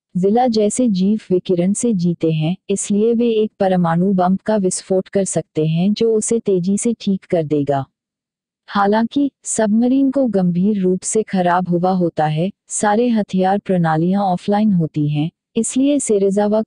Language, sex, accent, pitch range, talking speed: Hindi, female, native, 175-215 Hz, 150 wpm